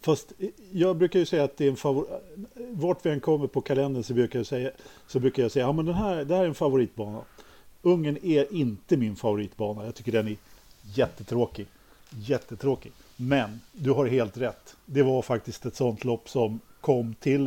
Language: Swedish